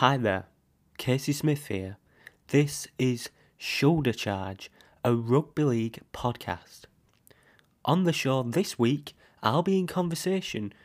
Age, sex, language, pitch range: 20-39, male, English, 105-135 Hz